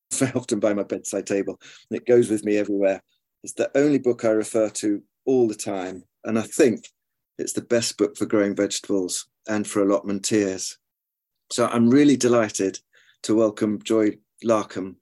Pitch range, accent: 100-125 Hz, British